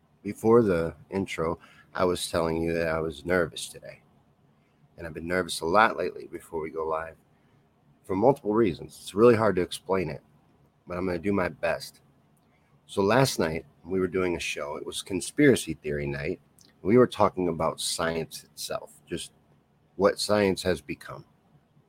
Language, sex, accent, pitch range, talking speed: English, male, American, 80-95 Hz, 175 wpm